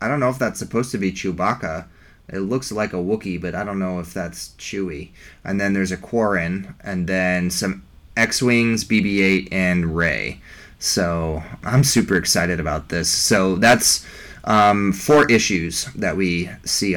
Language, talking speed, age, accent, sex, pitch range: English, 165 wpm, 30-49, American, male, 90-110 Hz